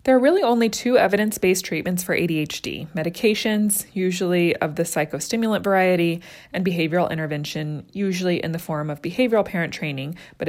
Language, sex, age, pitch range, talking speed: English, female, 20-39, 165-205 Hz, 155 wpm